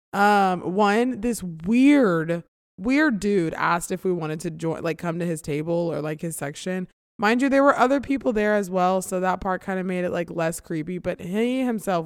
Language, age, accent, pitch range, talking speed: English, 20-39, American, 175-220 Hz, 215 wpm